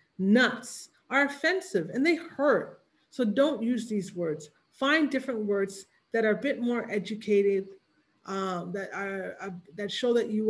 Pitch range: 200-260 Hz